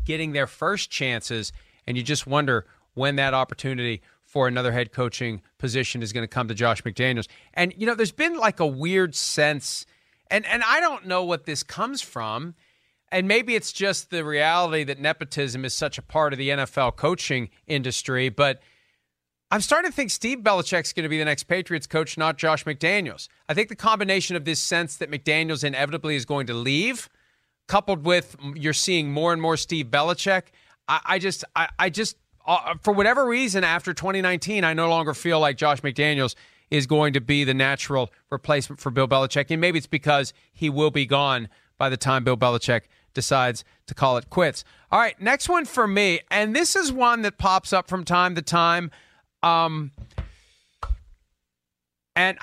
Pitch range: 130-185 Hz